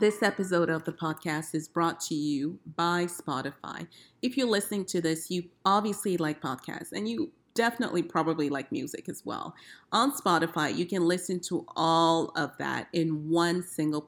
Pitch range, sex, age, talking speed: 155-220 Hz, female, 30-49, 170 wpm